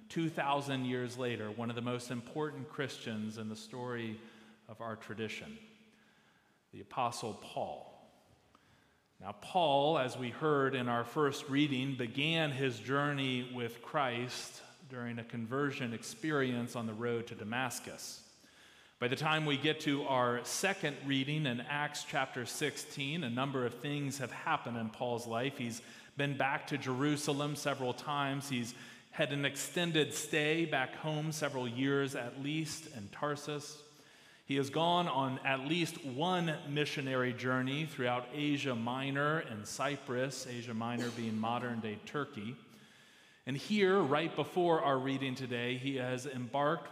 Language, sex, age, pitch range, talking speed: English, male, 40-59, 120-150 Hz, 145 wpm